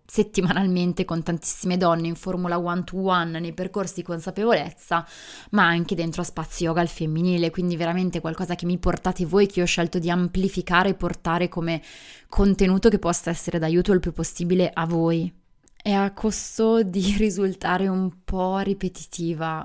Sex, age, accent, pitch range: female, 20-39, native, 165-185 Hz